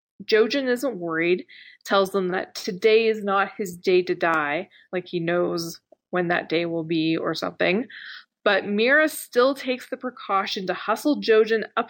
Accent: American